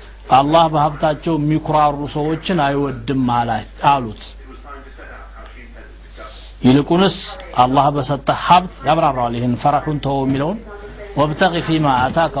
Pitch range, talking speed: 125-165 Hz, 95 wpm